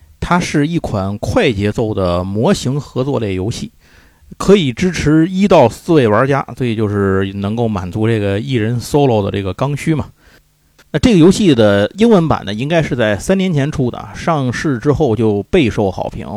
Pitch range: 100-135 Hz